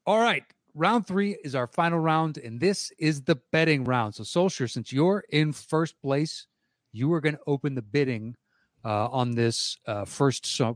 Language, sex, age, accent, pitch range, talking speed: English, male, 30-49, American, 120-160 Hz, 185 wpm